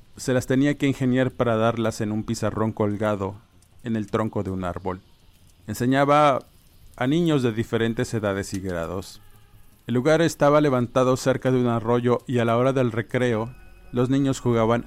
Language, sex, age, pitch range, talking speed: Spanish, male, 50-69, 100-125 Hz, 170 wpm